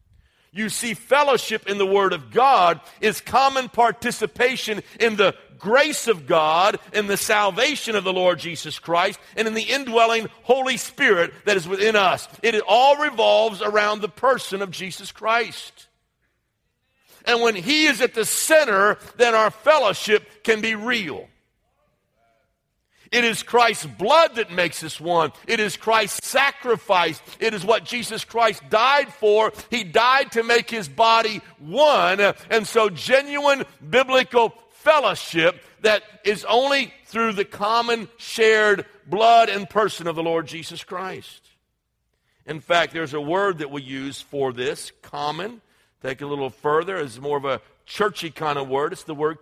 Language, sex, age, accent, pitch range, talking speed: English, male, 50-69, American, 170-235 Hz, 155 wpm